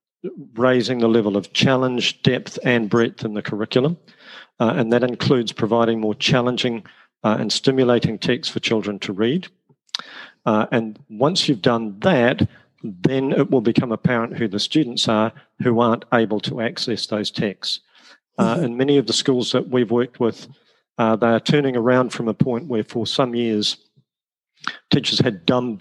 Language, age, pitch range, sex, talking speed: English, 50-69, 110-125 Hz, male, 170 wpm